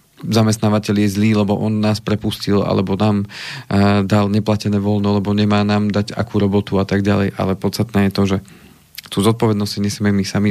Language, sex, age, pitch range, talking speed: Slovak, male, 40-59, 100-115 Hz, 185 wpm